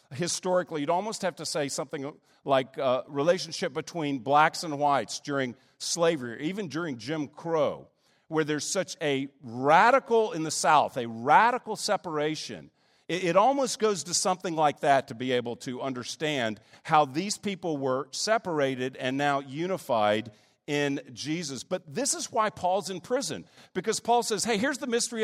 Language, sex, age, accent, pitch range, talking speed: English, male, 50-69, American, 145-220 Hz, 160 wpm